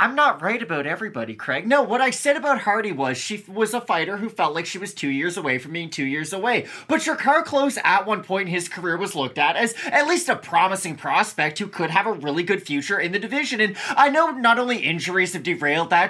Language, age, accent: English, 20-39, American